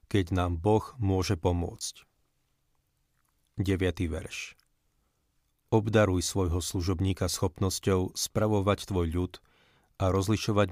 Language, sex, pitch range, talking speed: Slovak, male, 90-105 Hz, 90 wpm